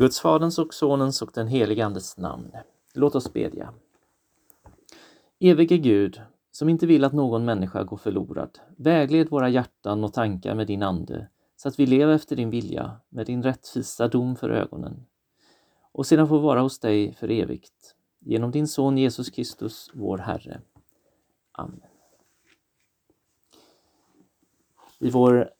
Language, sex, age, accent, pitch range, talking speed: Swedish, male, 30-49, native, 110-155 Hz, 145 wpm